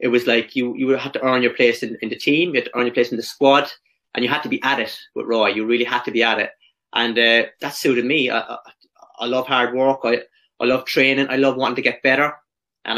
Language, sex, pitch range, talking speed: English, male, 120-140 Hz, 285 wpm